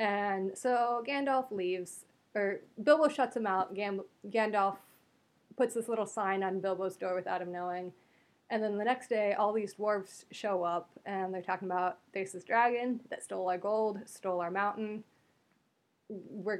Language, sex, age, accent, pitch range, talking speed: English, female, 20-39, American, 185-225 Hz, 165 wpm